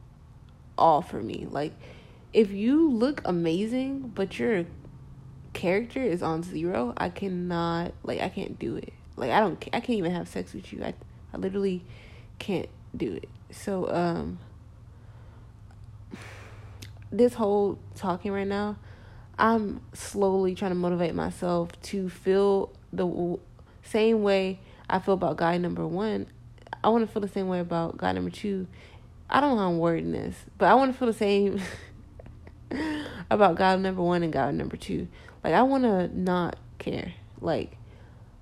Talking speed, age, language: 160 wpm, 20-39, English